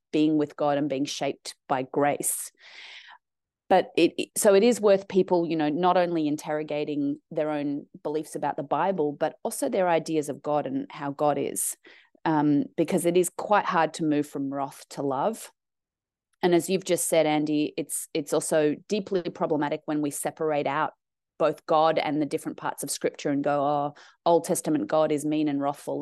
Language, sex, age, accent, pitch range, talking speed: English, female, 30-49, Australian, 150-185 Hz, 185 wpm